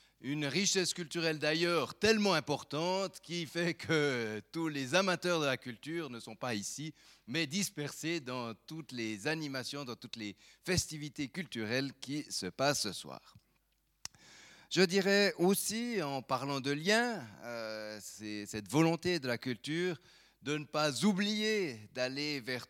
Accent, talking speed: French, 145 wpm